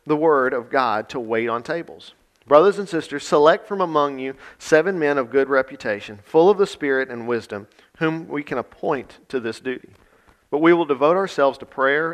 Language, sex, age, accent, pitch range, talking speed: English, male, 40-59, American, 120-150 Hz, 200 wpm